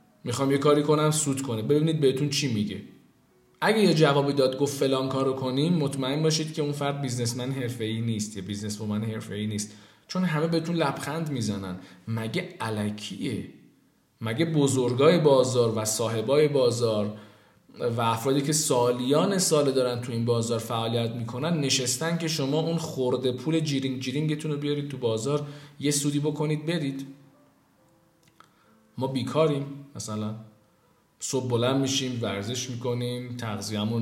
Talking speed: 140 wpm